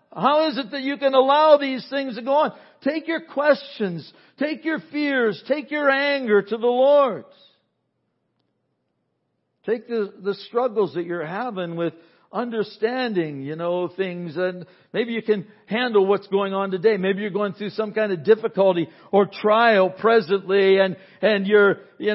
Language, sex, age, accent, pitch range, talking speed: English, male, 60-79, American, 175-230 Hz, 165 wpm